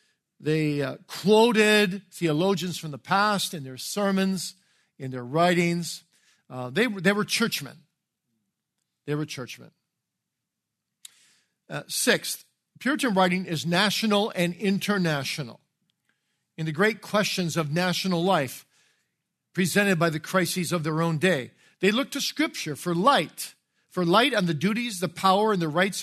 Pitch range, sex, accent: 150-200 Hz, male, American